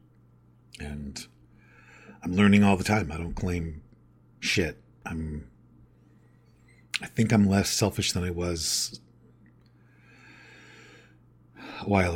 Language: English